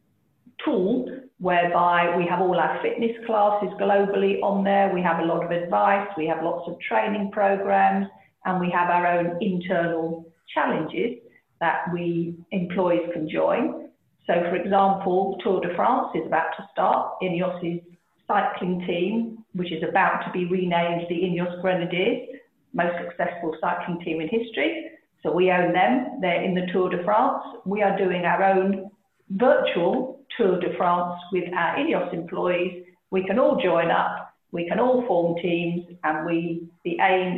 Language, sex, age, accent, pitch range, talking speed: English, female, 50-69, British, 170-195 Hz, 160 wpm